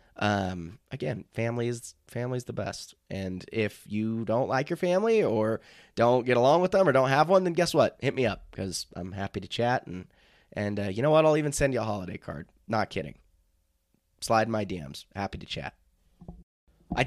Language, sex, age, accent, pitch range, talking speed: English, male, 20-39, American, 100-140 Hz, 205 wpm